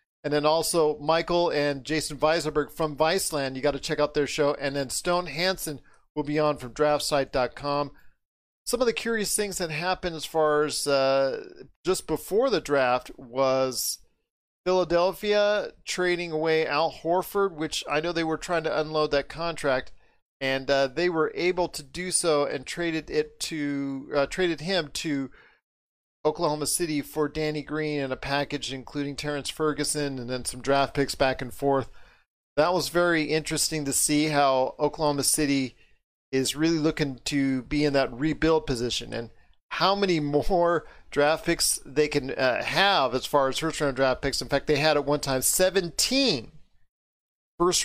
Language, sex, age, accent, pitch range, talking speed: English, male, 40-59, American, 140-170 Hz, 170 wpm